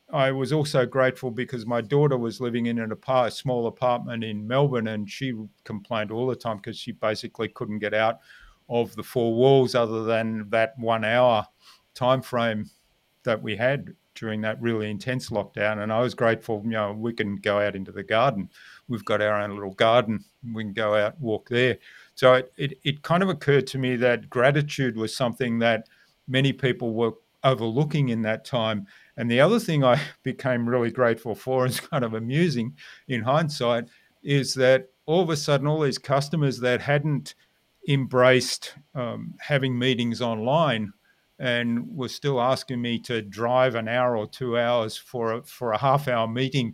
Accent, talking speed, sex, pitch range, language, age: Australian, 185 wpm, male, 115-130 Hz, English, 50-69